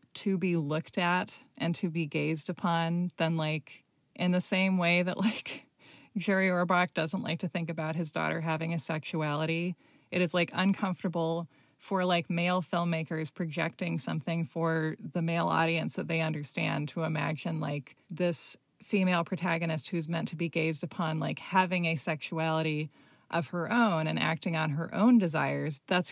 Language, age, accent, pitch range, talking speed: English, 20-39, American, 165-195 Hz, 165 wpm